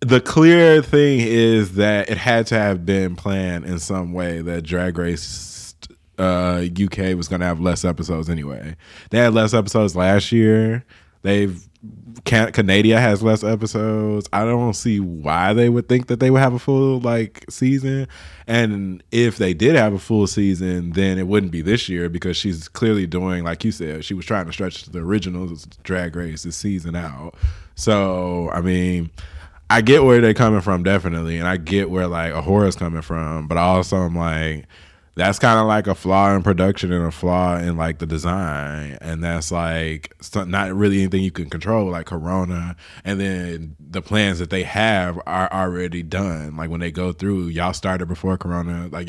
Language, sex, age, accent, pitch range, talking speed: English, male, 20-39, American, 85-105 Hz, 190 wpm